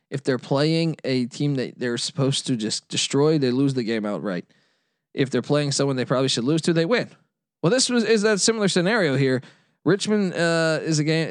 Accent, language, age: American, English, 20-39